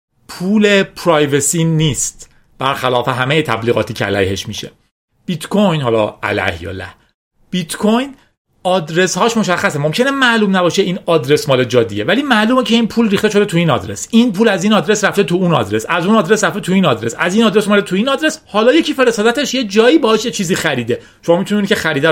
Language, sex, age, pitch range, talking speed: Persian, male, 40-59, 145-220 Hz, 195 wpm